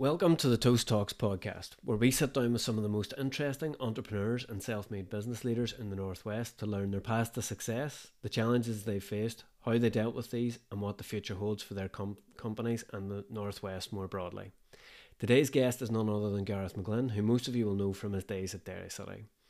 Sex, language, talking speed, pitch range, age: male, Russian, 220 wpm, 100-120 Hz, 30-49